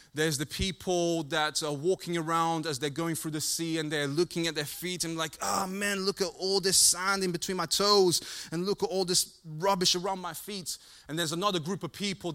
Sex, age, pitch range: male, 20-39, 150-185 Hz